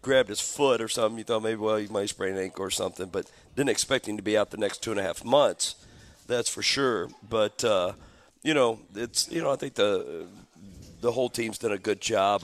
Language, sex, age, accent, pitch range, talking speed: English, male, 50-69, American, 105-125 Hz, 240 wpm